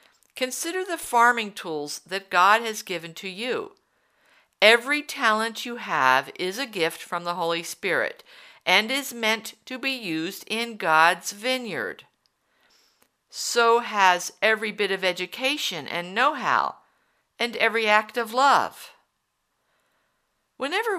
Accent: American